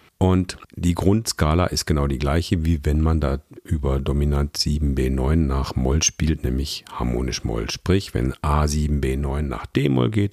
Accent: German